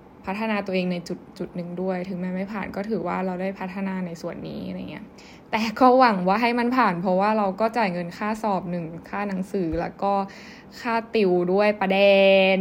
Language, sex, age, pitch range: Thai, female, 10-29, 180-210 Hz